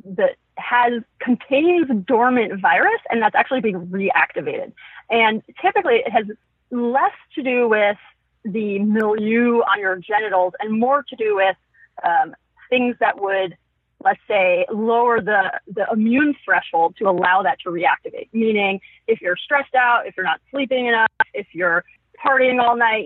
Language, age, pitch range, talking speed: English, 30-49, 200-265 Hz, 155 wpm